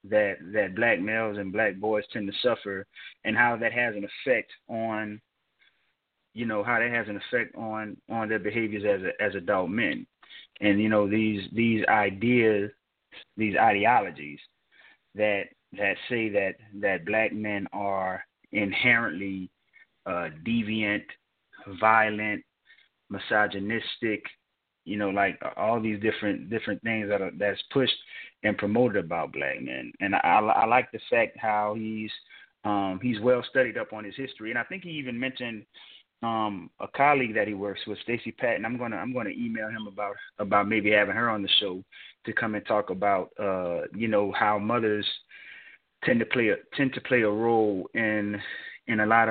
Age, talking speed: 30-49, 170 wpm